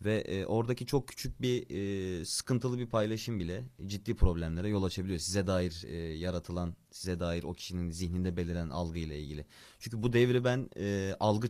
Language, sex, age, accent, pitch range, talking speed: Turkish, male, 30-49, native, 85-110 Hz, 170 wpm